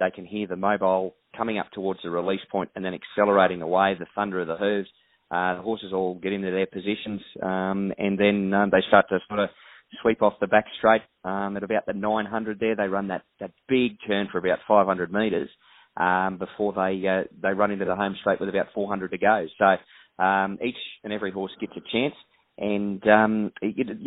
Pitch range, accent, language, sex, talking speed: 95-110 Hz, Australian, English, male, 205 wpm